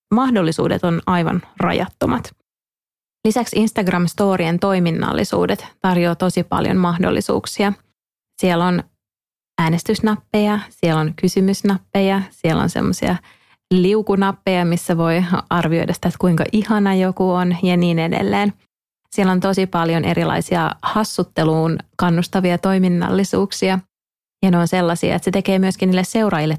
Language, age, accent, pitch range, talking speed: Finnish, 30-49, native, 170-195 Hz, 115 wpm